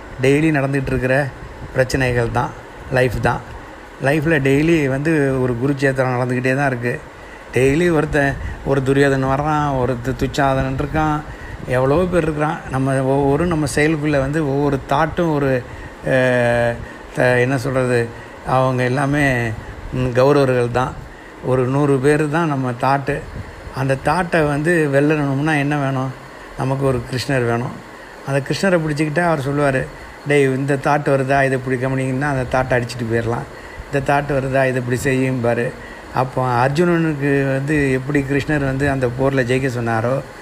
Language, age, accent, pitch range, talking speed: Tamil, 60-79, native, 130-150 Hz, 130 wpm